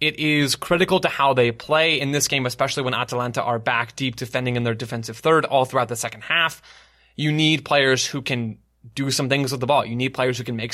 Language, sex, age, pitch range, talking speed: English, male, 20-39, 125-150 Hz, 240 wpm